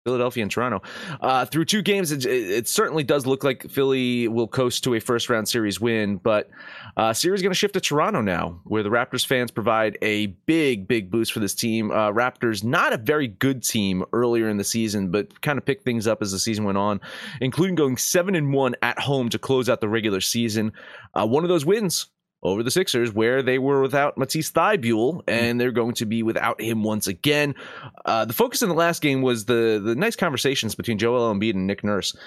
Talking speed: 220 wpm